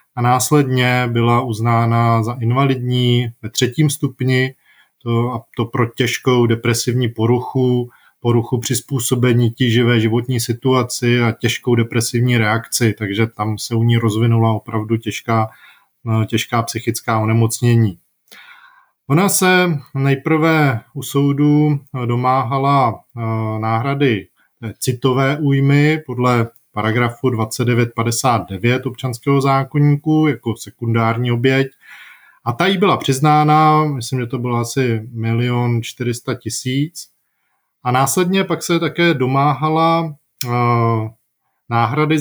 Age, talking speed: 20-39, 105 wpm